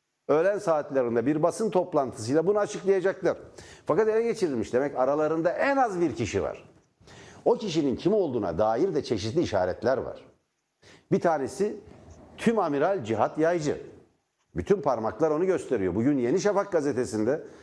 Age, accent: 60-79, native